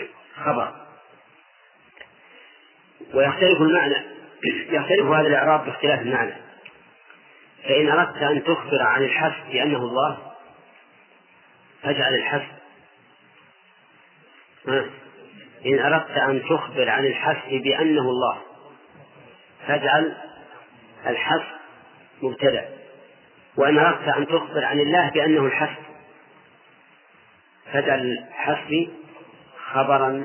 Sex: male